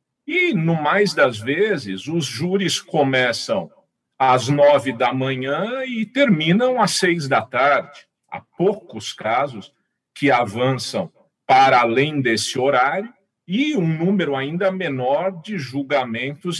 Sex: male